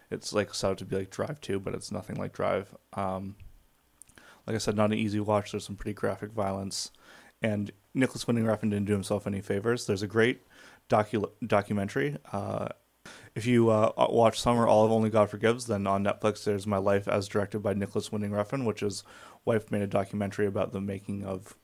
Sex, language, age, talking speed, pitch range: male, English, 20-39, 205 wpm, 100-105 Hz